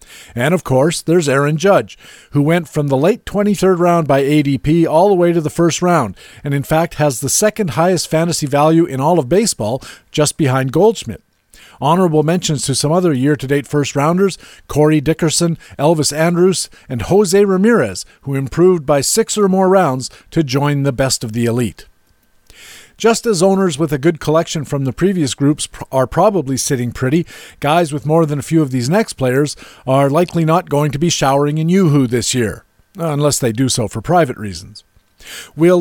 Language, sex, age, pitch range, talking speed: English, male, 50-69, 130-175 Hz, 185 wpm